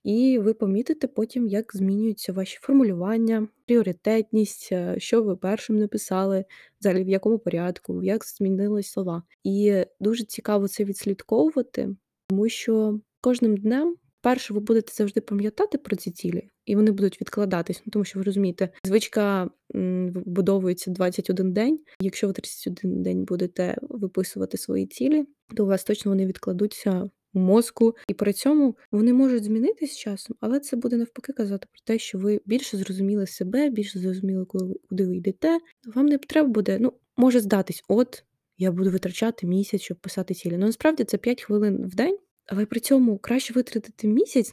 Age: 20-39